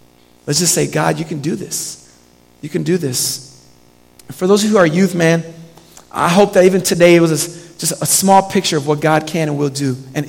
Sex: male